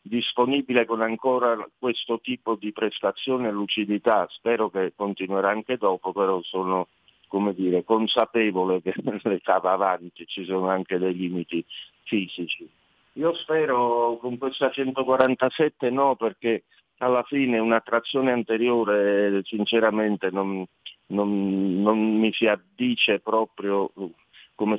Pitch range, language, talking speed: 95-120 Hz, Italian, 120 wpm